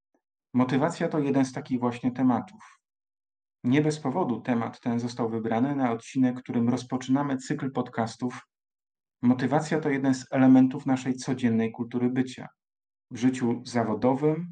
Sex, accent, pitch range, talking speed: male, native, 125-145 Hz, 130 wpm